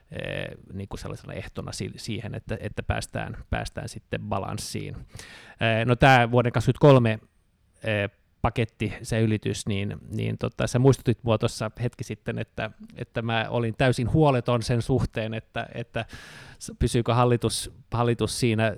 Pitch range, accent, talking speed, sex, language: 105-120 Hz, native, 125 wpm, male, Finnish